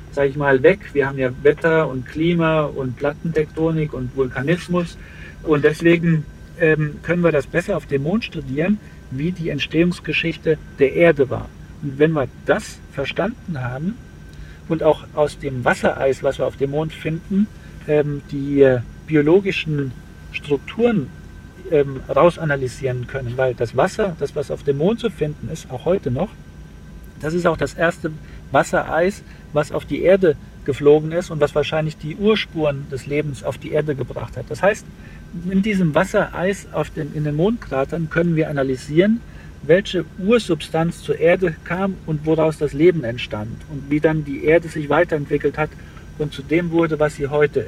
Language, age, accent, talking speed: German, 50-69, German, 165 wpm